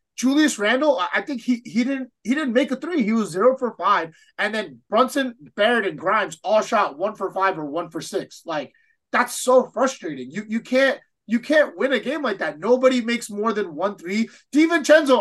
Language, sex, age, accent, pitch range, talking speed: English, male, 30-49, American, 190-260 Hz, 210 wpm